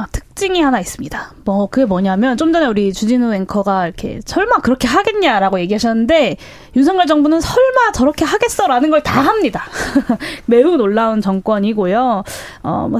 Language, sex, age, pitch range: Korean, female, 20-39, 210-310 Hz